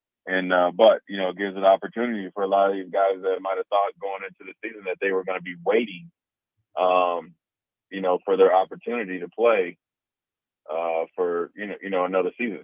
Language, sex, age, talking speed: English, male, 20-39, 215 wpm